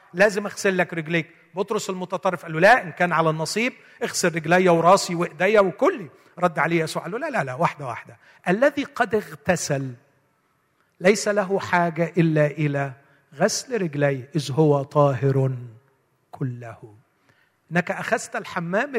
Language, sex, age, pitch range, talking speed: Arabic, male, 50-69, 145-195 Hz, 140 wpm